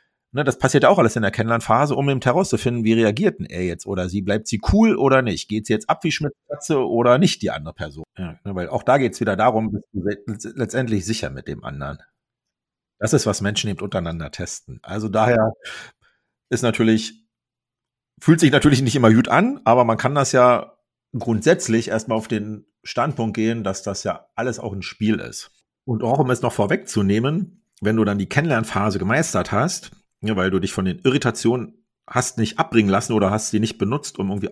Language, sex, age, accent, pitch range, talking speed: German, male, 40-59, German, 100-125 Hz, 205 wpm